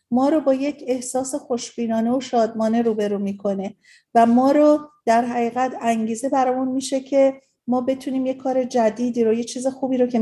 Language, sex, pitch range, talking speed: Persian, female, 225-265 Hz, 180 wpm